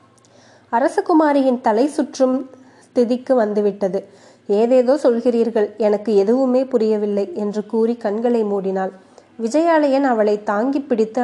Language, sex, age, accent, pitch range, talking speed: Tamil, female, 20-39, native, 215-260 Hz, 95 wpm